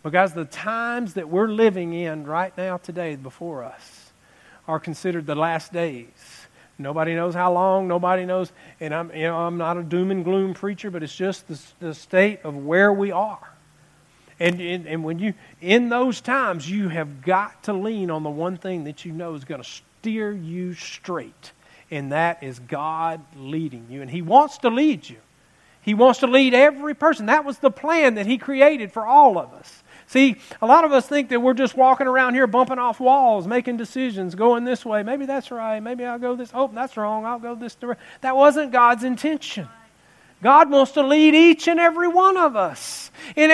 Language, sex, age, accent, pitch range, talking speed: English, male, 50-69, American, 165-255 Hz, 205 wpm